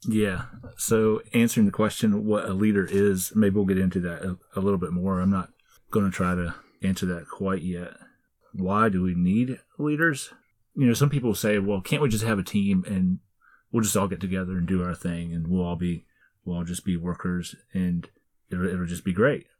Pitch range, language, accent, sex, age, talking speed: 90-110 Hz, English, American, male, 30-49, 215 wpm